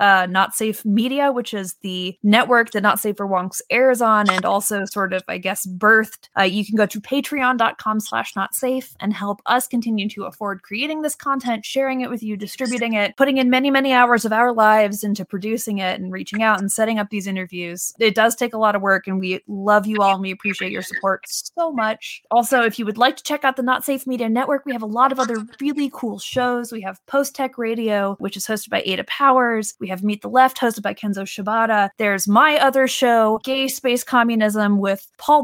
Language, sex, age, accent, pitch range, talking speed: English, female, 20-39, American, 205-255 Hz, 225 wpm